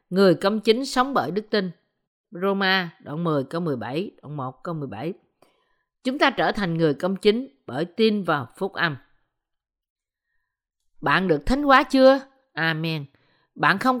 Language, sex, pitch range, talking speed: Vietnamese, female, 160-230 Hz, 155 wpm